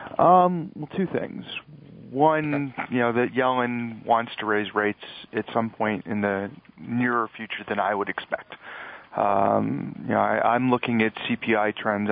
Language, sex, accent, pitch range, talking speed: English, male, American, 110-125 Hz, 165 wpm